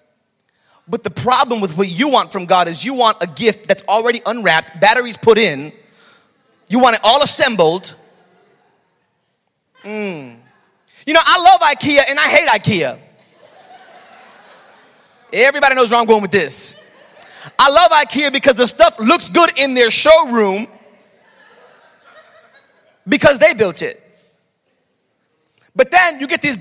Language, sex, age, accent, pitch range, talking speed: English, male, 30-49, American, 245-330 Hz, 140 wpm